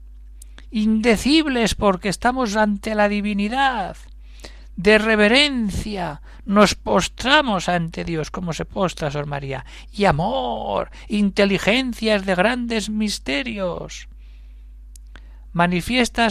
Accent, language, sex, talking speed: Spanish, Spanish, male, 90 wpm